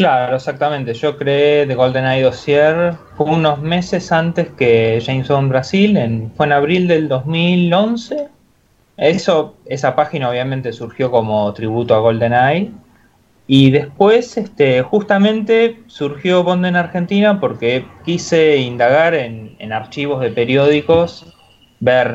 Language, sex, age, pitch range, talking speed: Spanish, male, 20-39, 120-165 Hz, 125 wpm